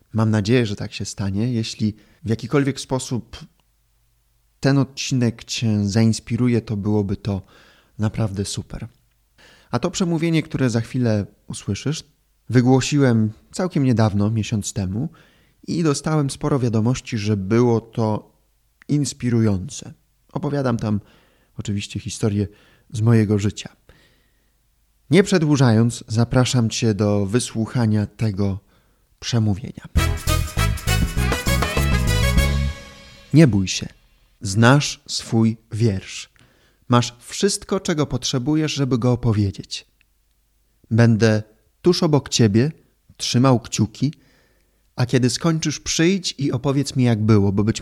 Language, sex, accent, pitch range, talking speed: Polish, male, native, 105-140 Hz, 105 wpm